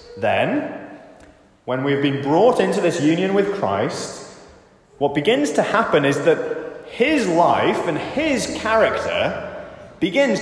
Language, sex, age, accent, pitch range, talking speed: English, male, 20-39, British, 125-200 Hz, 130 wpm